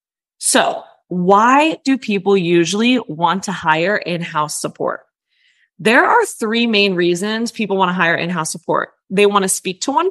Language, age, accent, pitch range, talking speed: English, 20-39, American, 180-245 Hz, 160 wpm